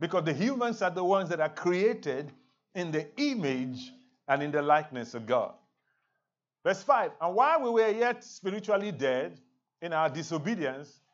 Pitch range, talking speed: 150-220 Hz, 160 wpm